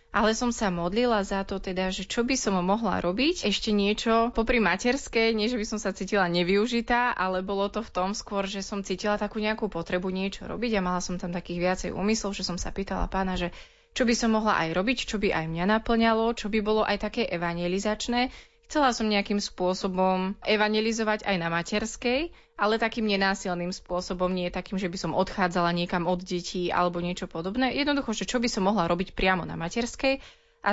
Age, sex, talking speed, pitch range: 20-39, female, 205 wpm, 185-225 Hz